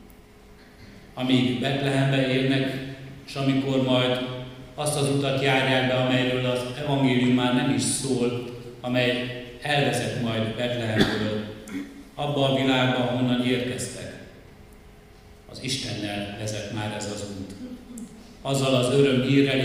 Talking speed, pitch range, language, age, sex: 115 wpm, 110-130 Hz, Hungarian, 60-79, male